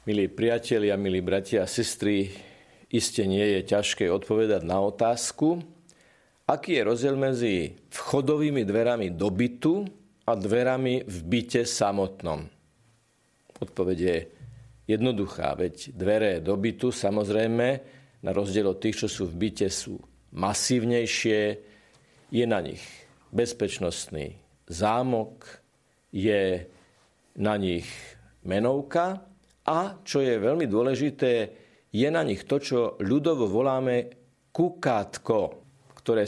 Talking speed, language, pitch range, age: 110 wpm, Slovak, 100-150 Hz, 50-69